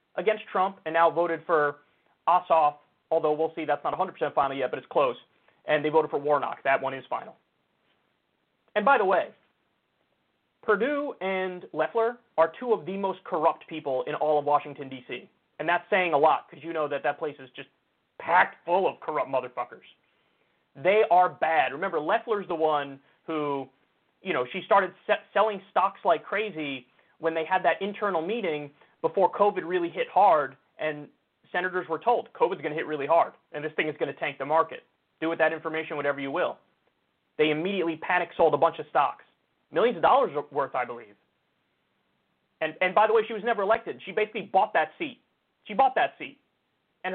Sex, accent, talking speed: male, American, 190 wpm